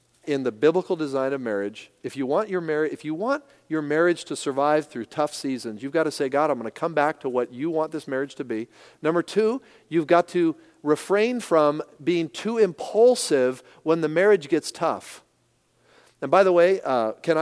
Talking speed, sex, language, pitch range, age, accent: 200 wpm, male, English, 135-175 Hz, 40-59, American